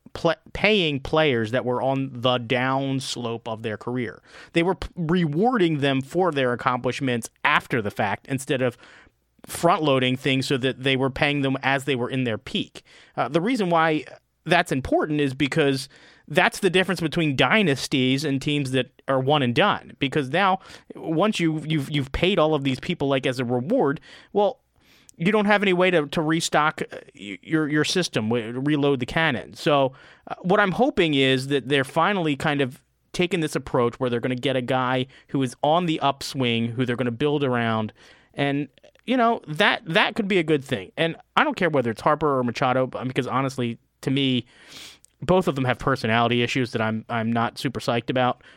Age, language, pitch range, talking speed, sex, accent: 30-49, English, 125-160 Hz, 195 wpm, male, American